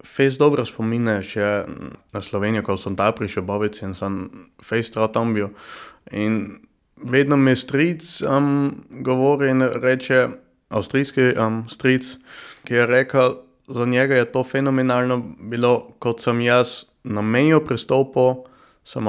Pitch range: 105-130 Hz